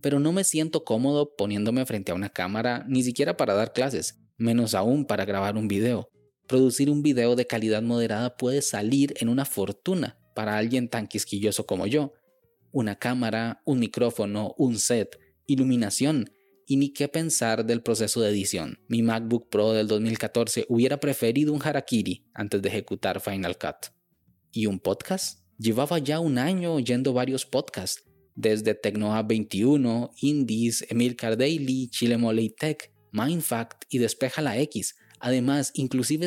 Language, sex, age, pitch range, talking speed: Spanish, male, 20-39, 110-140 Hz, 150 wpm